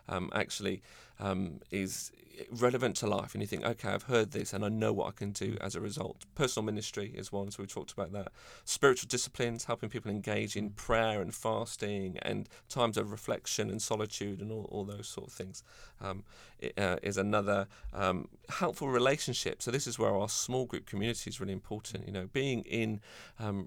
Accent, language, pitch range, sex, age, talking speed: British, English, 100-115 Hz, male, 40-59, 200 wpm